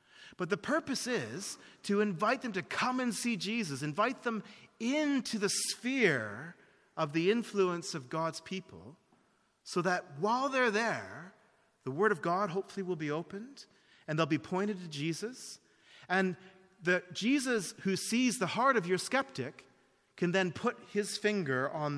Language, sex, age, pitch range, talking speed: English, male, 40-59, 135-195 Hz, 160 wpm